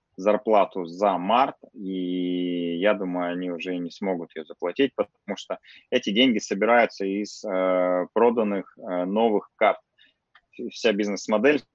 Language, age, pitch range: Russian, 20-39, 95-110 Hz